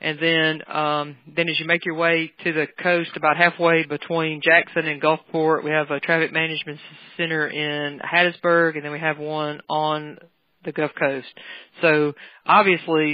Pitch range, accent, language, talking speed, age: 145-160 Hz, American, English, 170 wpm, 40-59